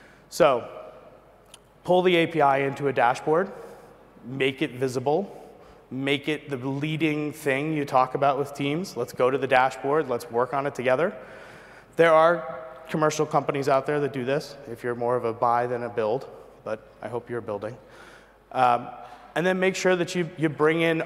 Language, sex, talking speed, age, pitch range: English, male, 180 wpm, 30-49, 125-155 Hz